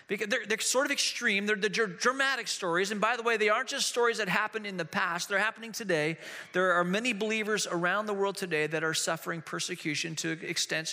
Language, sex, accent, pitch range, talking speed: English, male, American, 165-220 Hz, 220 wpm